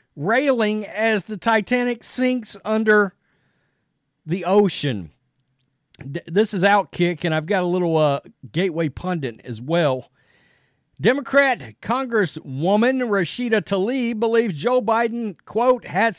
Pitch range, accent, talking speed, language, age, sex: 135-220 Hz, American, 115 wpm, English, 50-69, male